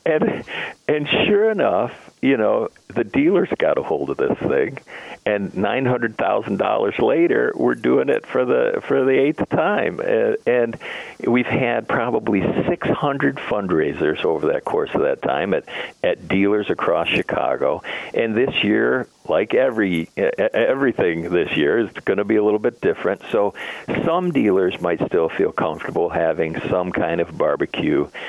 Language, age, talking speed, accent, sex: English, 50-69, 160 wpm, American, male